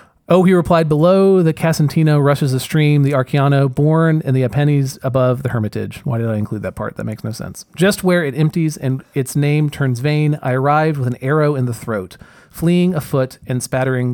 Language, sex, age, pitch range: English, male, 30-49, 125-155 Hz